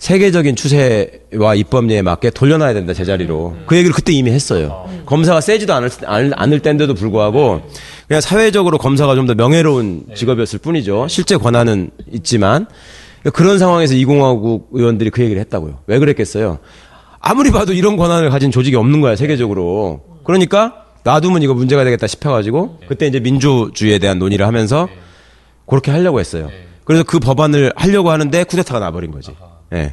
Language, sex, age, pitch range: Korean, male, 30-49, 105-155 Hz